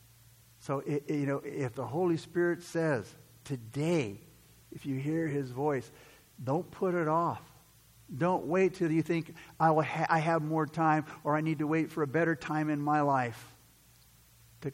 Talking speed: 180 wpm